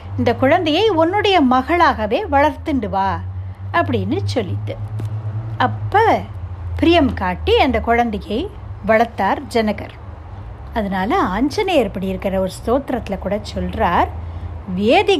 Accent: native